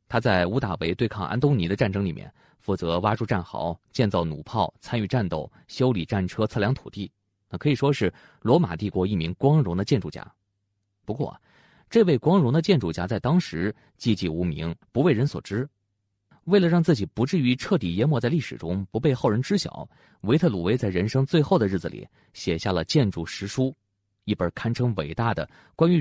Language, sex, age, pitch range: Chinese, male, 30-49, 95-130 Hz